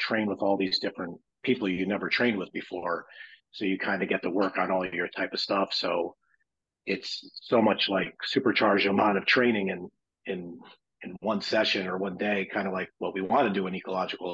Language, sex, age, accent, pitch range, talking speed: English, male, 40-59, American, 100-125 Hz, 220 wpm